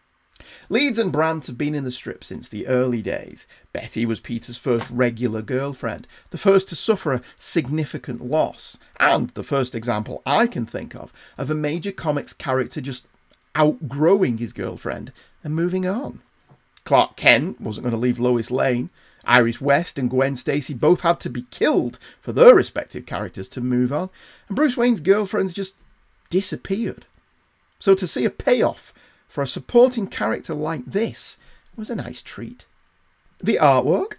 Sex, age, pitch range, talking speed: male, 40-59, 115-165 Hz, 165 wpm